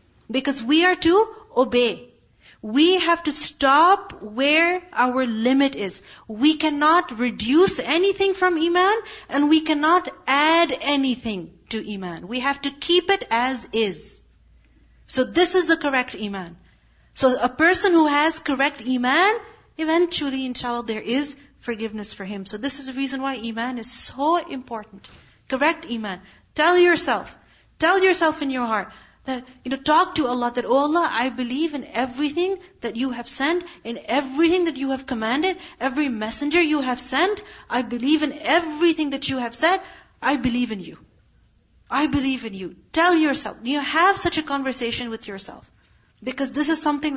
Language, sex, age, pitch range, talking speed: English, female, 40-59, 240-325 Hz, 165 wpm